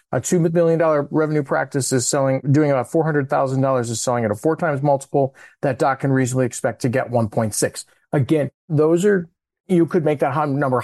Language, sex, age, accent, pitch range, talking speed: English, male, 40-59, American, 125-155 Hz, 185 wpm